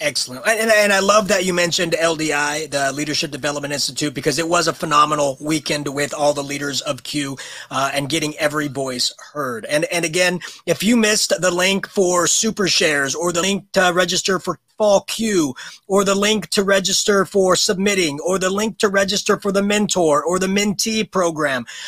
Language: English